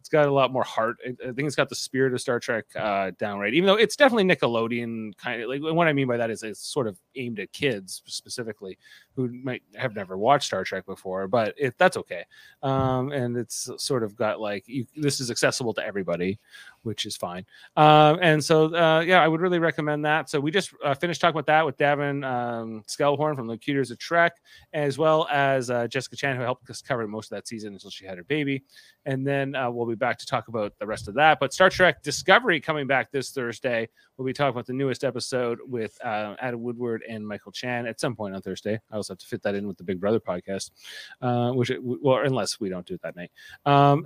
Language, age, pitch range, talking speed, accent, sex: English, 30-49, 115-145 Hz, 235 wpm, American, male